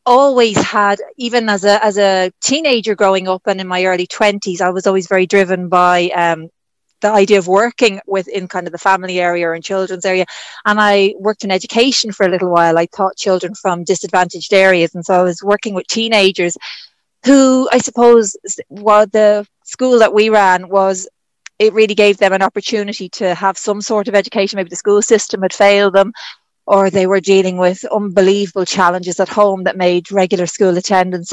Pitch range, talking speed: 185-210 Hz, 190 wpm